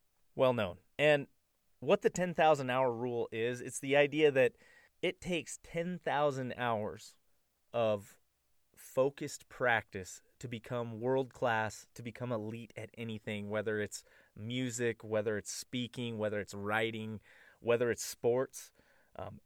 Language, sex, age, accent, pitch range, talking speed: English, male, 30-49, American, 110-140 Hz, 120 wpm